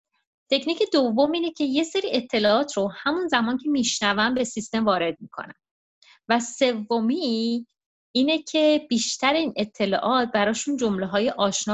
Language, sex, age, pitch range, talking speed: Persian, female, 30-49, 190-240 Hz, 140 wpm